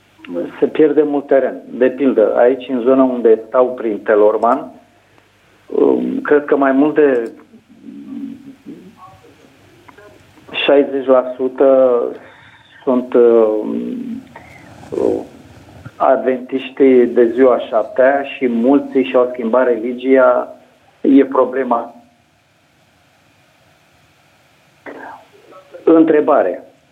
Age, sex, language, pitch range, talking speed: 50-69, male, Romanian, 125-165 Hz, 70 wpm